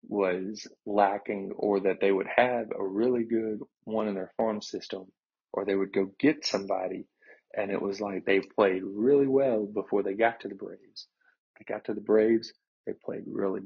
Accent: American